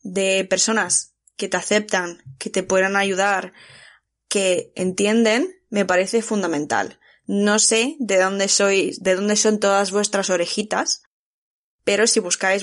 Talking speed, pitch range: 135 wpm, 185-220 Hz